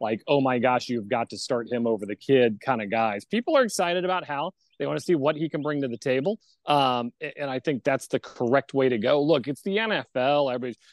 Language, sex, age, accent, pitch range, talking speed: English, male, 30-49, American, 120-155 Hz, 255 wpm